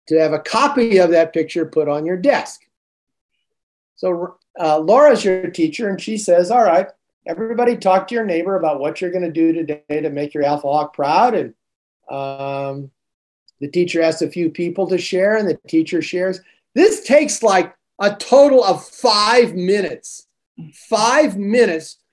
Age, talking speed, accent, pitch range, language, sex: 50-69, 170 wpm, American, 160-235 Hz, English, male